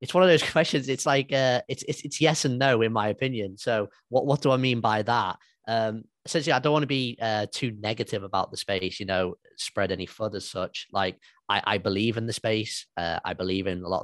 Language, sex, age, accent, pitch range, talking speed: English, male, 20-39, British, 95-110 Hz, 250 wpm